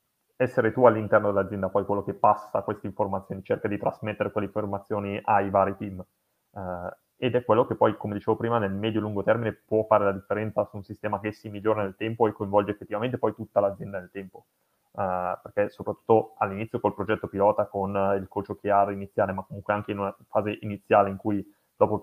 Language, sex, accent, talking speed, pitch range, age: Italian, male, native, 205 wpm, 100-110 Hz, 20-39